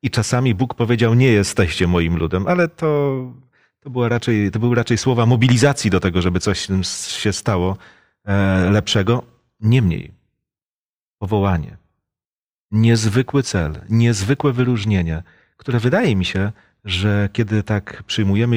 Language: Polish